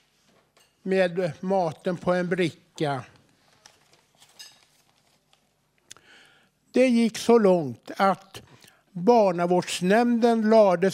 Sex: male